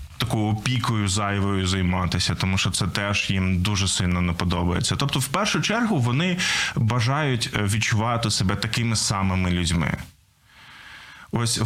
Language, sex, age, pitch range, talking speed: Ukrainian, male, 20-39, 100-130 Hz, 130 wpm